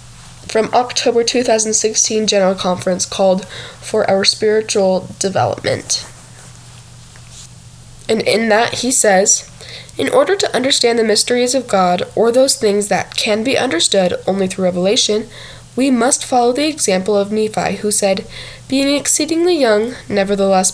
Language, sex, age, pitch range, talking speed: English, female, 10-29, 190-240 Hz, 135 wpm